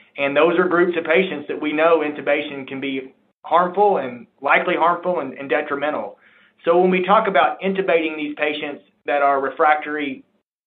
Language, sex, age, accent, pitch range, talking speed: English, male, 30-49, American, 135-165 Hz, 170 wpm